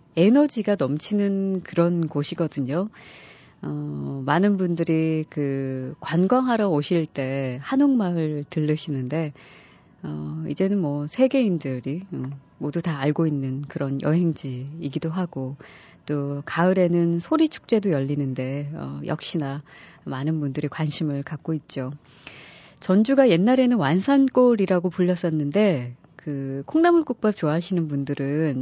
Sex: female